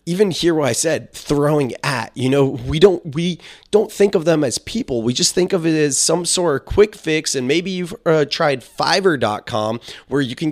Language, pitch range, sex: English, 115-155 Hz, male